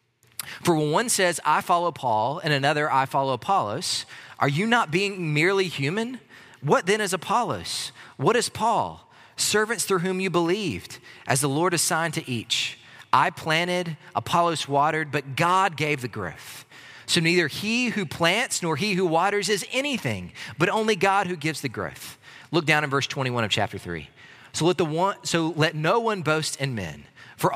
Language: English